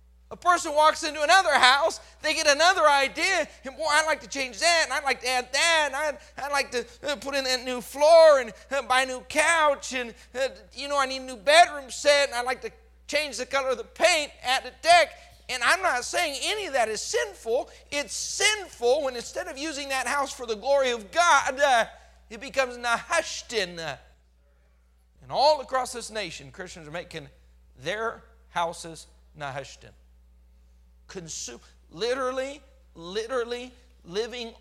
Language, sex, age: English, male, 40-59